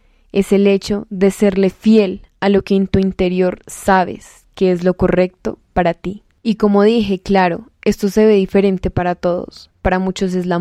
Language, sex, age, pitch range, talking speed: Spanish, female, 10-29, 185-210 Hz, 185 wpm